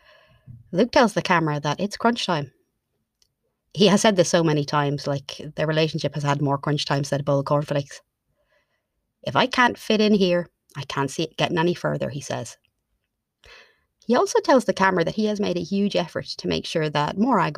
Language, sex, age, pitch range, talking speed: English, female, 30-49, 145-185 Hz, 200 wpm